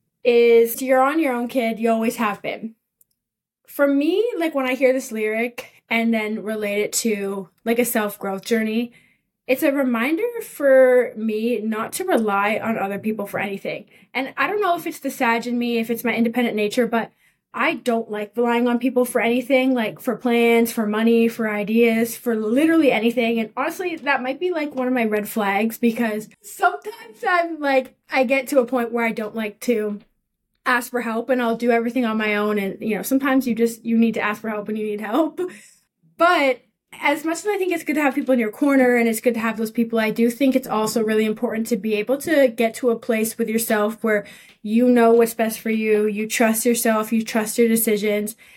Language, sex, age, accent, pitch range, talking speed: English, female, 20-39, American, 220-260 Hz, 220 wpm